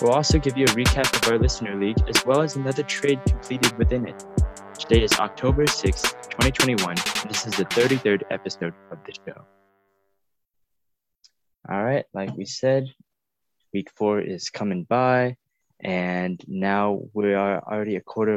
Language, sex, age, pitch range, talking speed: English, male, 20-39, 90-115 Hz, 155 wpm